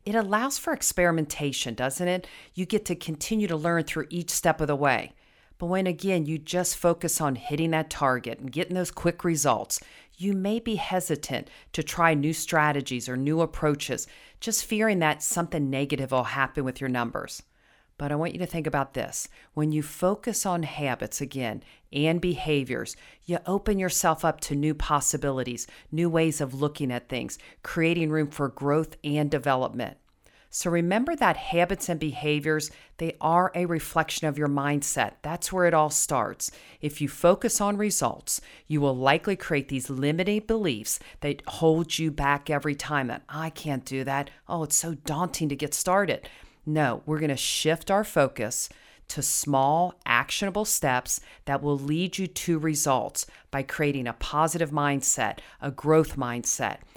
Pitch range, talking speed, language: 140-175 Hz, 170 wpm, English